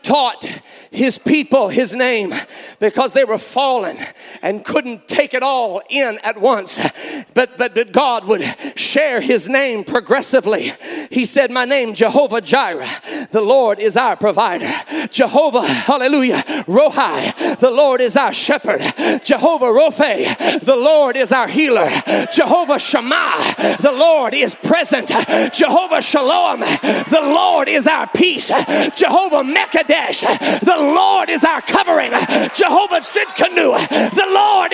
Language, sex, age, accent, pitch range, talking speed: English, male, 40-59, American, 260-370 Hz, 130 wpm